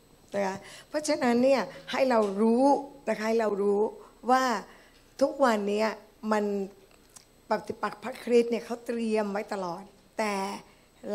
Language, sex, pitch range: Thai, female, 195-245 Hz